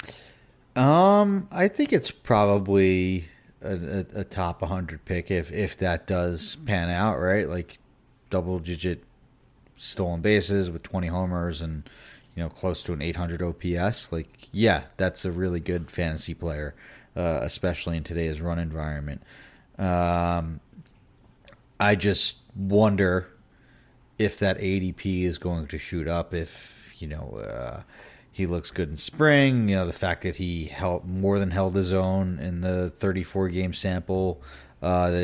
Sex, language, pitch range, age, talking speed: male, English, 85-105 Hz, 30-49, 150 wpm